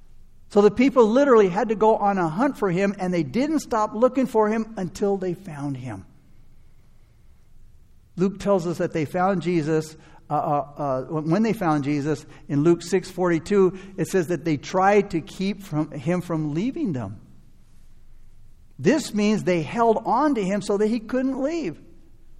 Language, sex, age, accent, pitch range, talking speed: English, male, 60-79, American, 165-230 Hz, 175 wpm